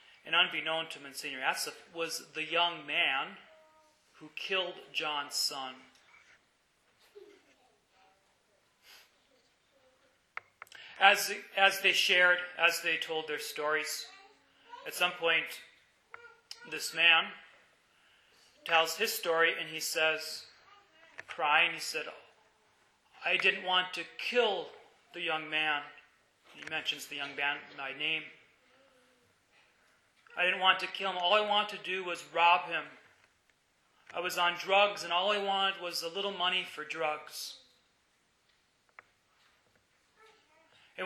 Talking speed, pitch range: 120 wpm, 155-200 Hz